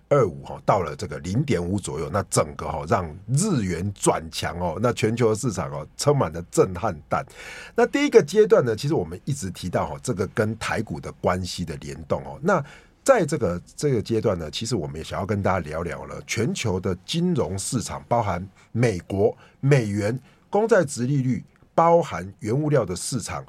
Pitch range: 90-145 Hz